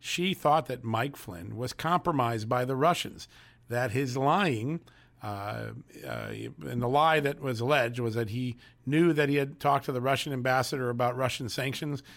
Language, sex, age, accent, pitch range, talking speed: English, male, 50-69, American, 120-150 Hz, 180 wpm